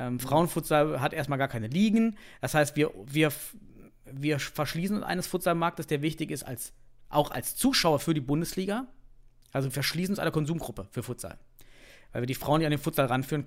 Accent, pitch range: German, 135-175 Hz